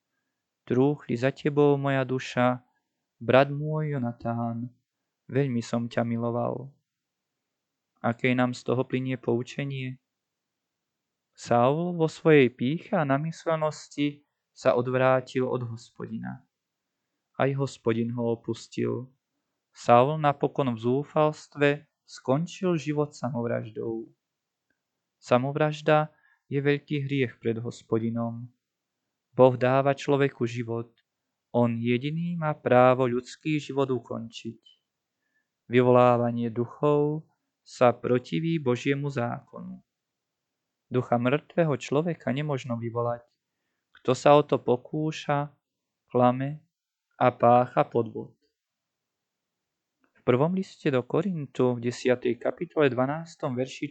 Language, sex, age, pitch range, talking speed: Slovak, male, 20-39, 120-145 Hz, 95 wpm